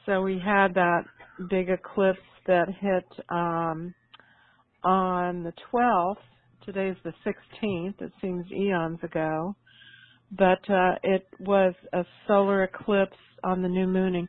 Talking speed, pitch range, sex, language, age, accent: 130 wpm, 175-200 Hz, female, English, 50-69, American